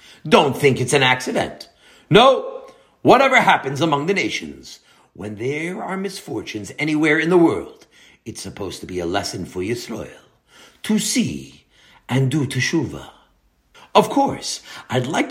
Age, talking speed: 60-79, 140 wpm